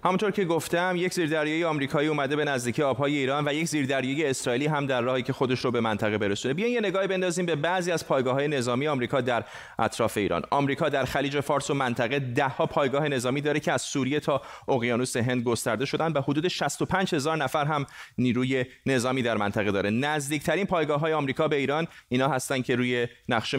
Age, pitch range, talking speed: 30-49, 125-155 Hz, 190 wpm